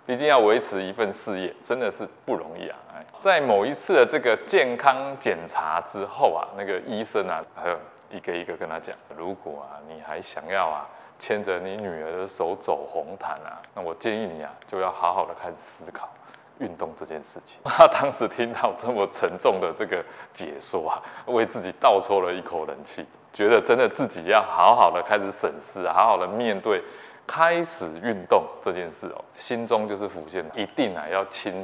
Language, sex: Chinese, male